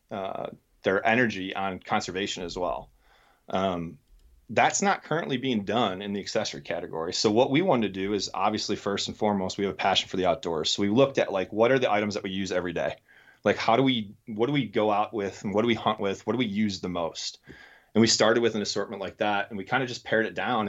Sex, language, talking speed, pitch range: male, English, 250 wpm, 95-115 Hz